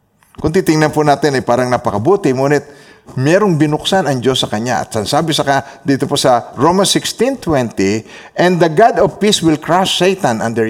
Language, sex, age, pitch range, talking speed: Filipino, male, 50-69, 120-180 Hz, 180 wpm